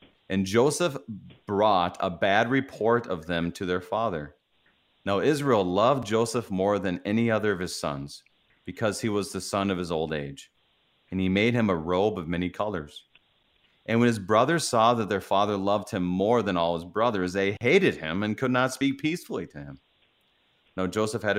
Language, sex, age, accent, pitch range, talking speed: English, male, 30-49, American, 90-120 Hz, 190 wpm